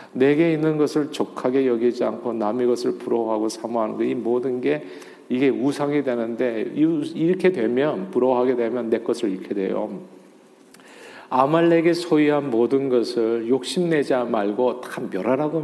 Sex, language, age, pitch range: male, Korean, 40-59, 115-145 Hz